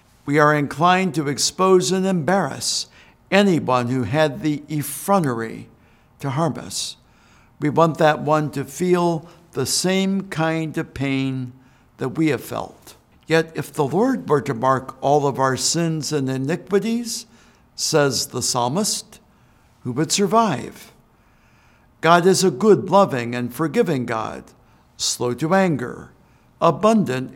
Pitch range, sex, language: 135-175 Hz, male, English